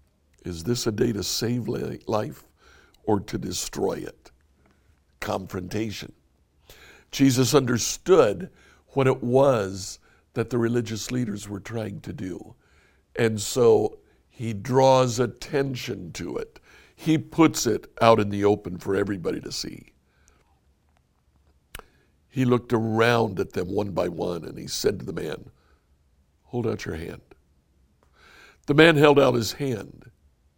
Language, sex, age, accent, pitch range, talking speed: English, male, 60-79, American, 75-120 Hz, 130 wpm